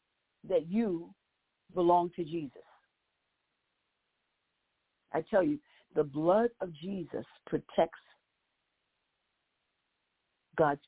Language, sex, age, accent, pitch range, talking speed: English, female, 60-79, American, 165-210 Hz, 75 wpm